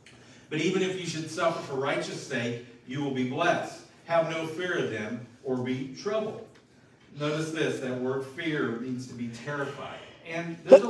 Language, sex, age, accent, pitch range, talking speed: English, male, 40-59, American, 135-195 Hz, 180 wpm